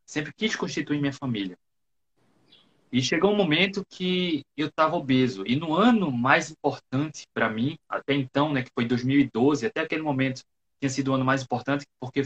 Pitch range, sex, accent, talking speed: 115-145 Hz, male, Brazilian, 175 wpm